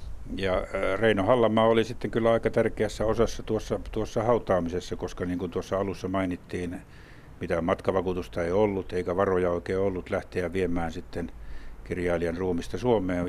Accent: native